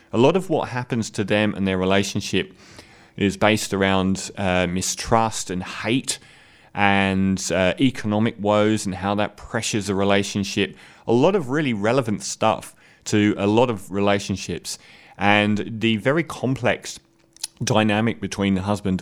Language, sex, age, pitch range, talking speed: English, male, 30-49, 100-120 Hz, 145 wpm